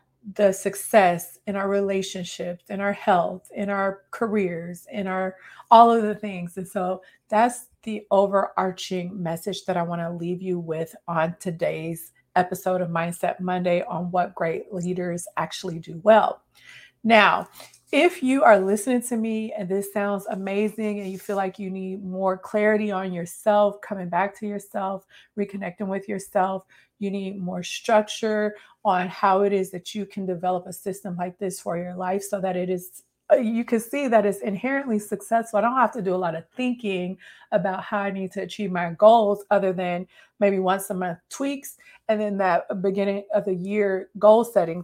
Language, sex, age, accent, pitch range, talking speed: English, female, 30-49, American, 180-210 Hz, 180 wpm